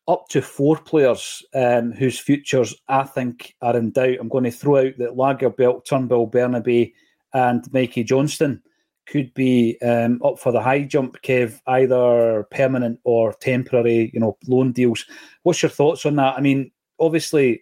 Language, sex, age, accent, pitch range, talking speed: English, male, 30-49, British, 120-135 Hz, 165 wpm